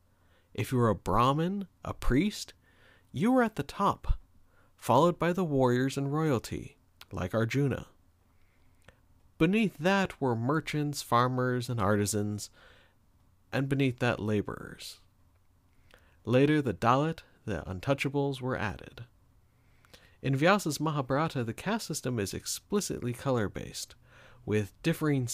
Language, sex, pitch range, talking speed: English, male, 100-140 Hz, 115 wpm